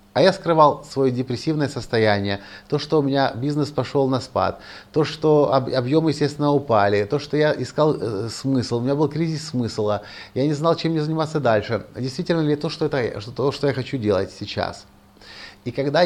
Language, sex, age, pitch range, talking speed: Russian, male, 30-49, 105-145 Hz, 180 wpm